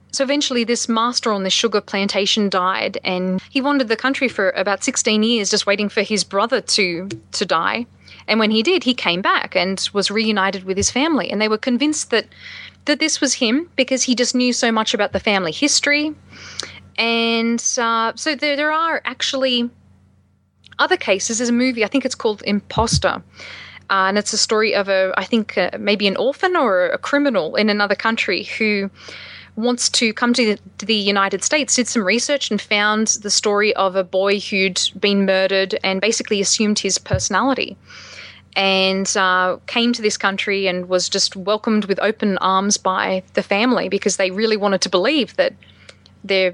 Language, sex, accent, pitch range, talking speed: English, female, Australian, 190-245 Hz, 185 wpm